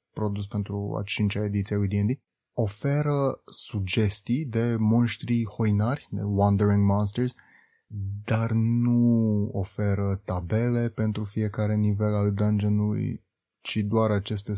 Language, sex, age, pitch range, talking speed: Romanian, male, 30-49, 100-115 Hz, 110 wpm